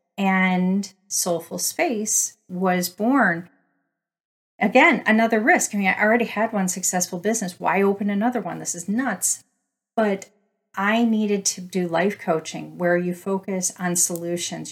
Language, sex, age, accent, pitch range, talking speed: English, female, 40-59, American, 170-200 Hz, 145 wpm